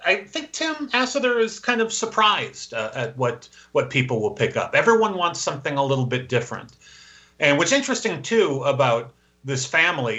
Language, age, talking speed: English, 40-59, 175 wpm